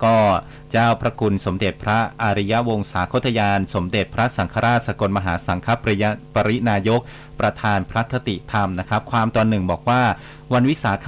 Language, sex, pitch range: Thai, male, 100-125 Hz